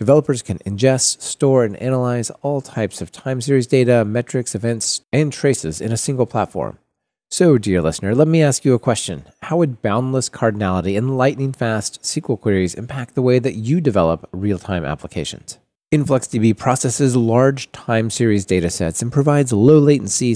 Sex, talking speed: male, 160 wpm